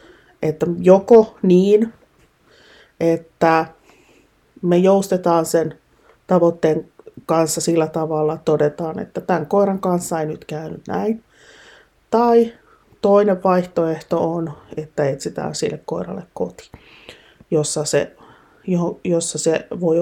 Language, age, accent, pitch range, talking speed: Finnish, 30-49, native, 155-185 Hz, 100 wpm